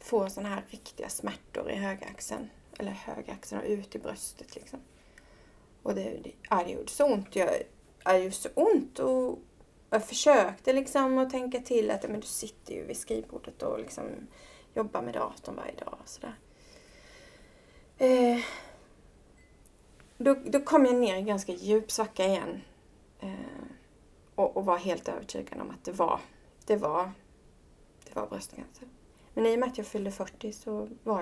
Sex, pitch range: female, 195-245 Hz